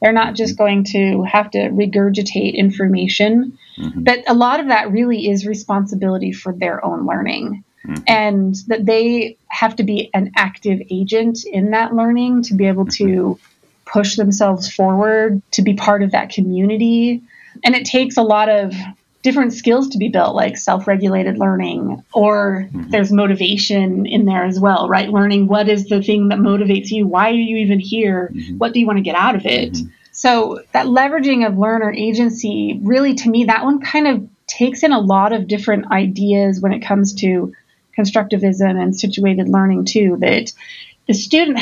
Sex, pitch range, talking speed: female, 195-225 Hz, 175 wpm